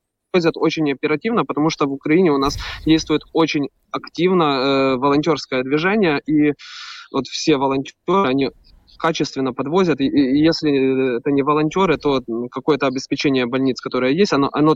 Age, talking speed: 20-39, 140 wpm